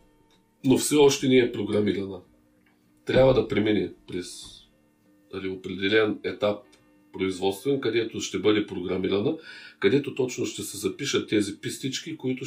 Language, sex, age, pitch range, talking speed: Bulgarian, male, 40-59, 95-130 Hz, 125 wpm